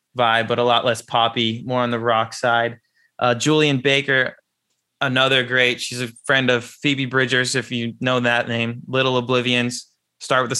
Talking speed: 180 wpm